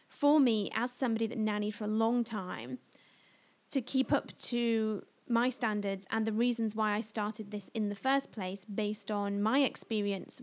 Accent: British